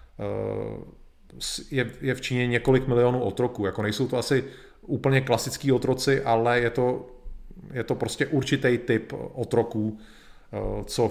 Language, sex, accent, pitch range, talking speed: Czech, male, native, 105-130 Hz, 140 wpm